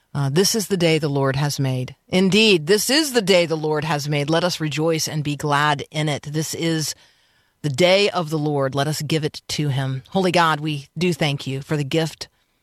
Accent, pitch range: American, 145-175 Hz